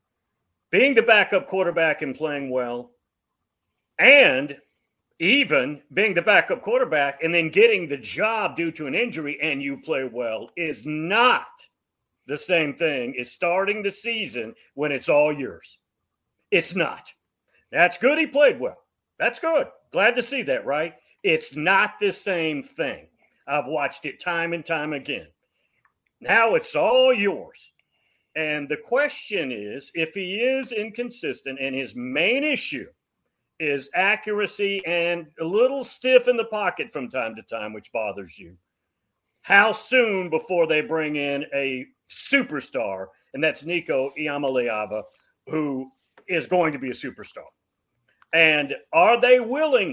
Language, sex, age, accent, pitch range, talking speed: English, male, 40-59, American, 140-235 Hz, 145 wpm